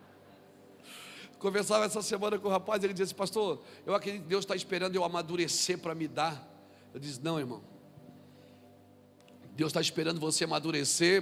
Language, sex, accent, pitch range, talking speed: Portuguese, male, Brazilian, 175-235 Hz, 155 wpm